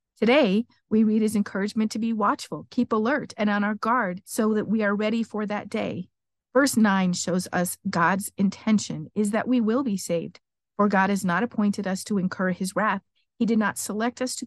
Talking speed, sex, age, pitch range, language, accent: 205 wpm, female, 50-69, 190-235 Hz, English, American